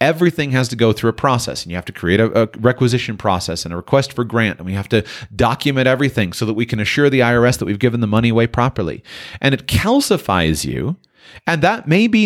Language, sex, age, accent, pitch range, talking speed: English, male, 30-49, American, 110-140 Hz, 240 wpm